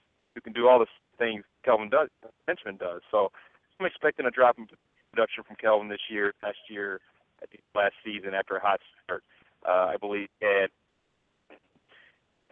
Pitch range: 95-110 Hz